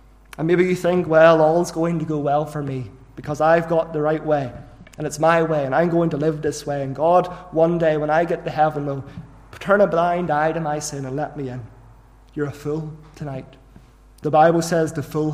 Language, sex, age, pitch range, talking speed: English, male, 30-49, 135-165 Hz, 230 wpm